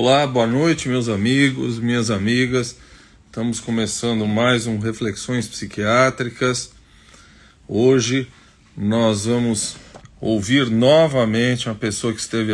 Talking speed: 105 wpm